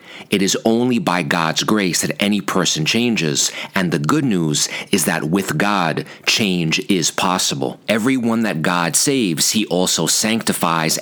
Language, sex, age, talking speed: English, male, 40-59, 155 wpm